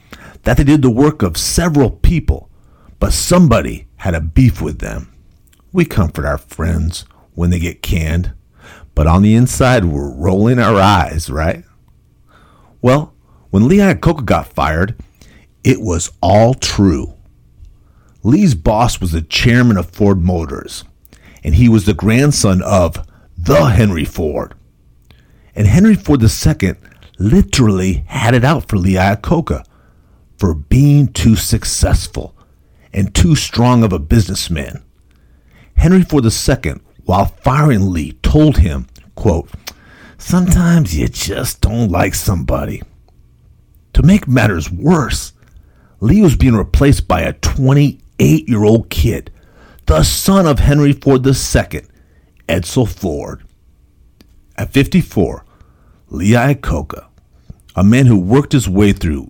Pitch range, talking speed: 80-125 Hz, 130 wpm